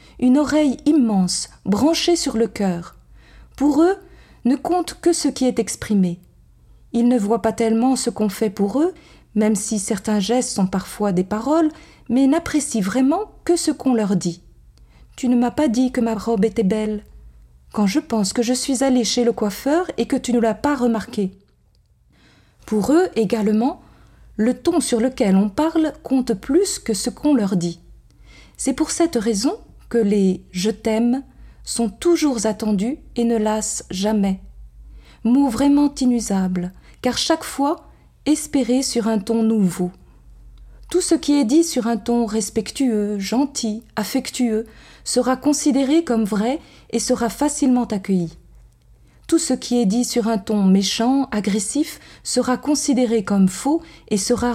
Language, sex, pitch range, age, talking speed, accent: French, female, 215-280 Hz, 50-69, 160 wpm, French